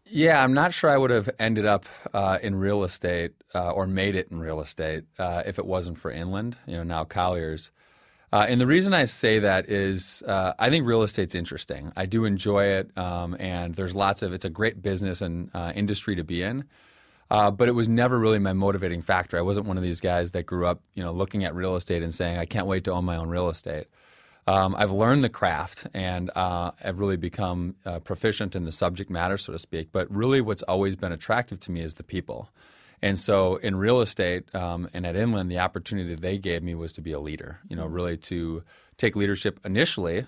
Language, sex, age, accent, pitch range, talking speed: English, male, 30-49, American, 85-105 Hz, 230 wpm